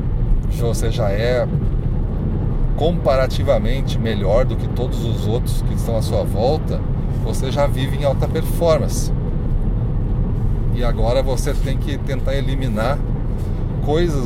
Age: 40-59